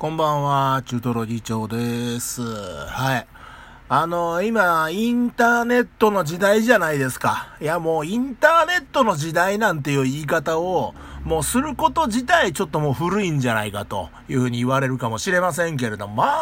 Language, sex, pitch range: Japanese, male, 130-210 Hz